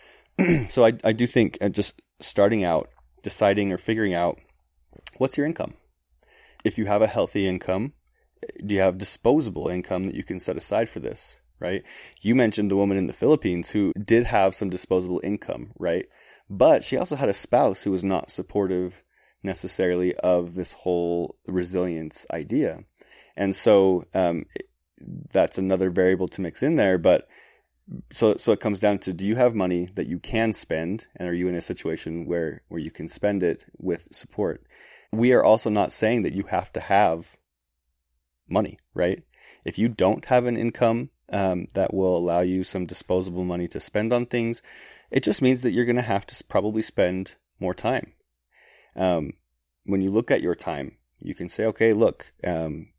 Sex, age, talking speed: male, 20-39, 180 wpm